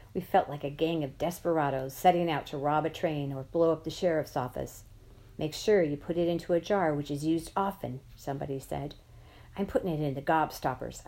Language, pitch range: English, 135-170 Hz